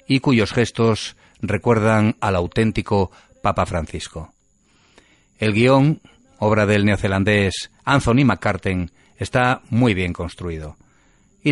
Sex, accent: male, Spanish